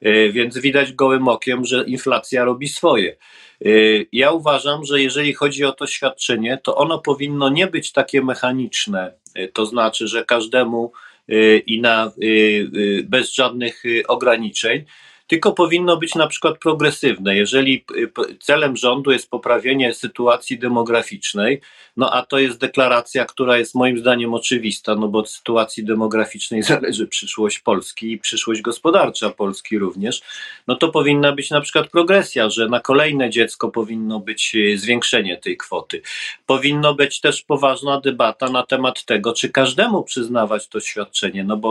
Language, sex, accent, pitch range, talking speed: Polish, male, native, 115-145 Hz, 140 wpm